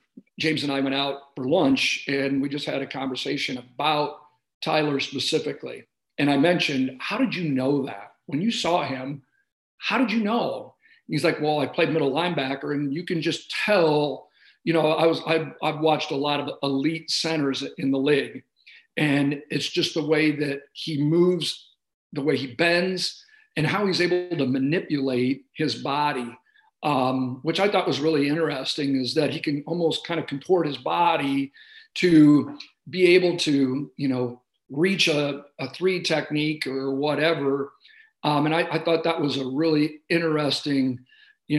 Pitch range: 140-165 Hz